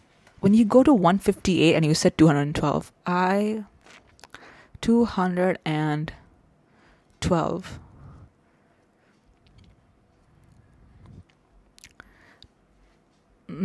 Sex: female